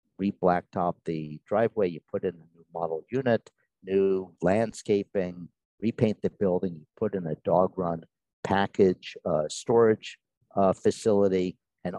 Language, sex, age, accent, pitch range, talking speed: English, male, 50-69, American, 90-105 Hz, 135 wpm